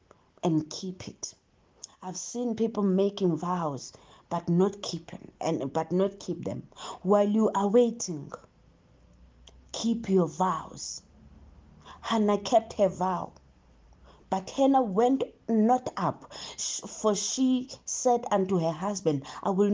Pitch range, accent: 165-205 Hz, South African